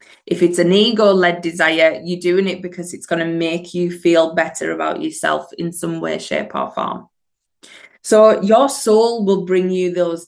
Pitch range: 175-210 Hz